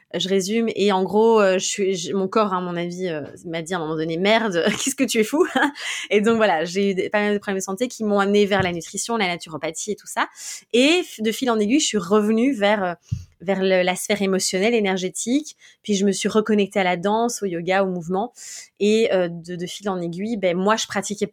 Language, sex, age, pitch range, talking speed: French, female, 20-39, 190-230 Hz, 245 wpm